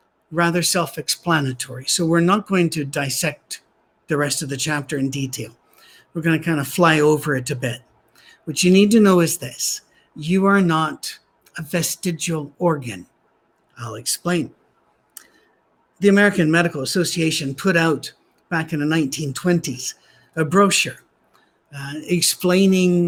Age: 60-79